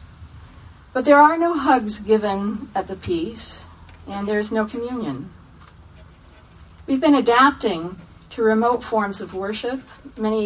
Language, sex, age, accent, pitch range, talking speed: English, female, 50-69, American, 165-225 Hz, 125 wpm